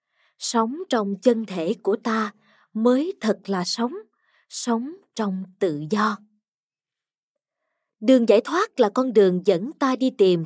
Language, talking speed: Vietnamese, 140 wpm